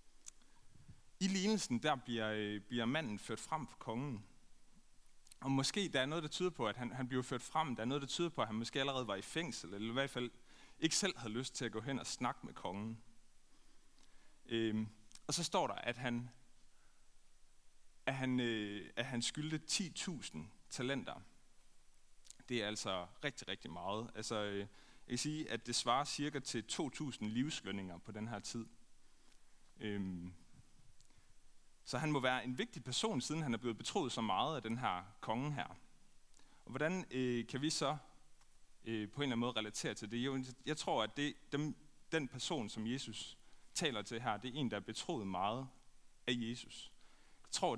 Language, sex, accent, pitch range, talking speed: Danish, male, native, 110-140 Hz, 180 wpm